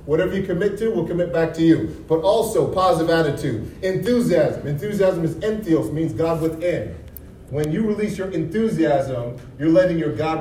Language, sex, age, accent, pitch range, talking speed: English, male, 30-49, American, 150-190 Hz, 165 wpm